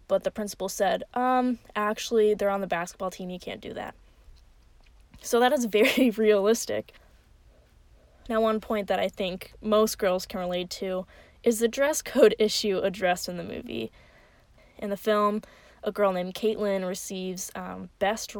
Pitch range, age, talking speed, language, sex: 180-215 Hz, 10-29, 165 wpm, English, female